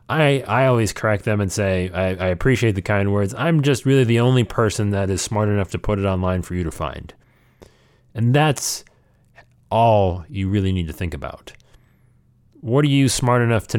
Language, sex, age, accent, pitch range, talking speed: English, male, 30-49, American, 90-120 Hz, 200 wpm